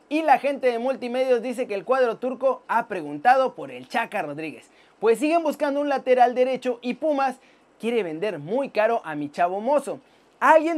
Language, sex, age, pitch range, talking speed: Spanish, male, 30-49, 220-285 Hz, 185 wpm